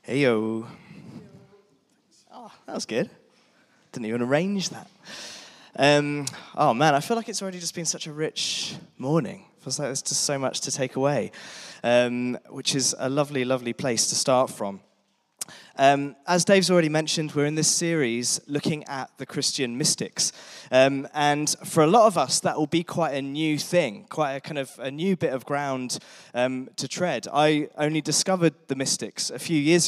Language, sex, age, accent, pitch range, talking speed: English, male, 20-39, British, 135-170 Hz, 180 wpm